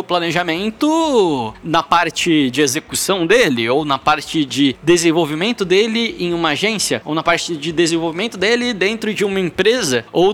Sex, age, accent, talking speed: male, 20-39, Brazilian, 150 wpm